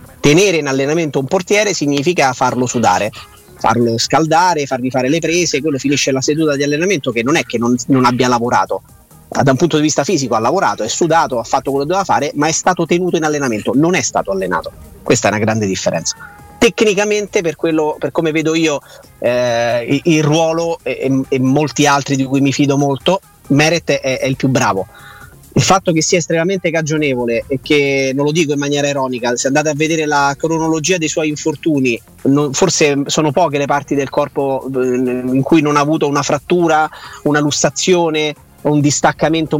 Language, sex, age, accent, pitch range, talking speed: Italian, male, 30-49, native, 135-160 Hz, 185 wpm